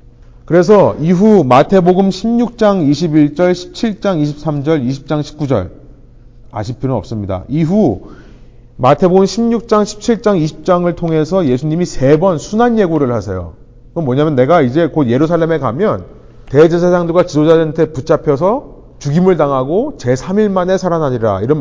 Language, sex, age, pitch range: Korean, male, 30-49, 130-190 Hz